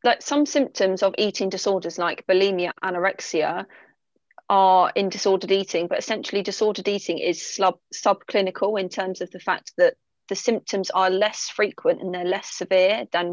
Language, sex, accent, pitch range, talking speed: English, female, British, 175-205 Hz, 160 wpm